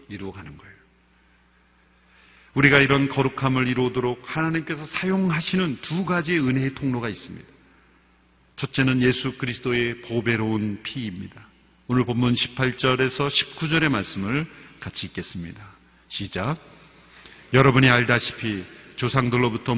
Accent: native